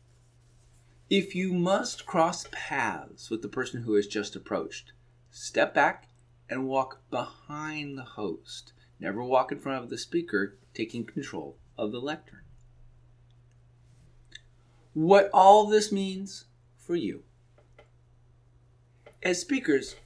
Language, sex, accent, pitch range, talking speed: English, male, American, 120-155 Hz, 115 wpm